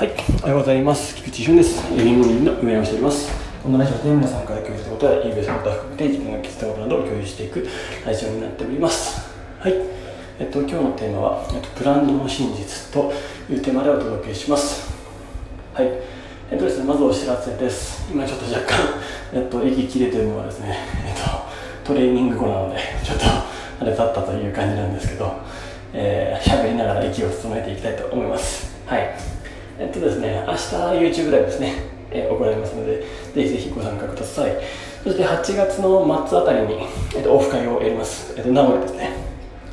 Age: 20-39